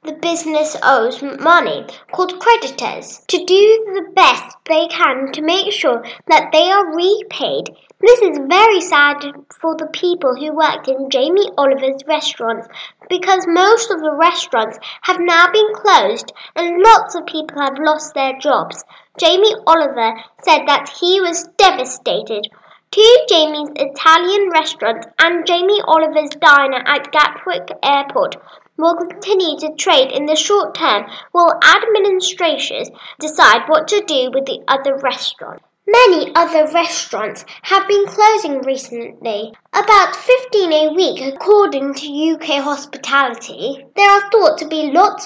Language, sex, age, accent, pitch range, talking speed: English, female, 10-29, British, 285-400 Hz, 140 wpm